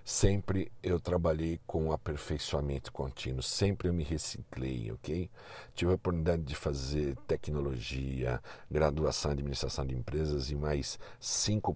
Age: 60-79